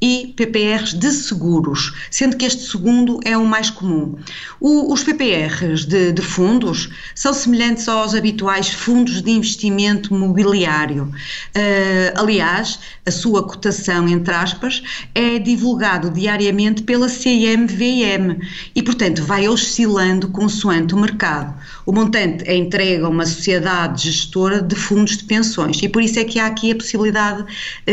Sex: female